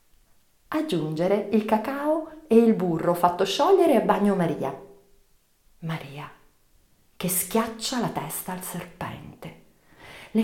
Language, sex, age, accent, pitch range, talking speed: Italian, female, 40-59, native, 165-210 Hz, 110 wpm